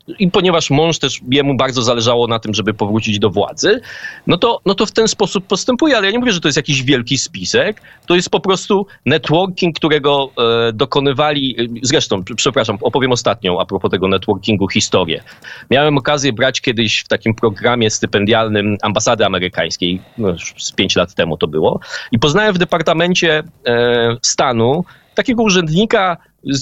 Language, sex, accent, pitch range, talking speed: Polish, male, native, 115-170 Hz, 165 wpm